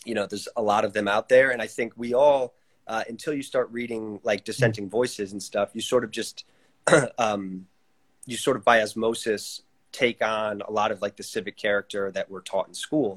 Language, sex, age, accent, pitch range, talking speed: English, male, 30-49, American, 100-120 Hz, 220 wpm